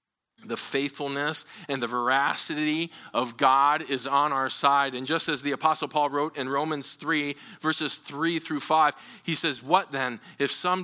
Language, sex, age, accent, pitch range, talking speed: English, male, 40-59, American, 120-155 Hz, 170 wpm